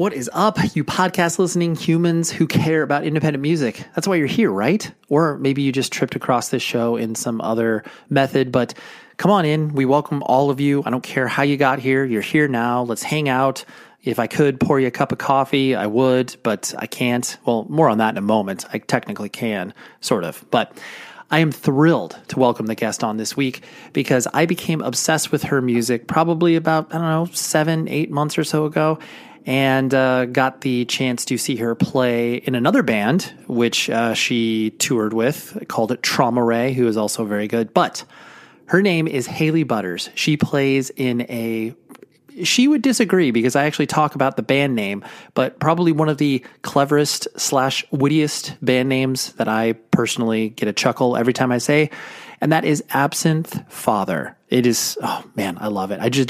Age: 30-49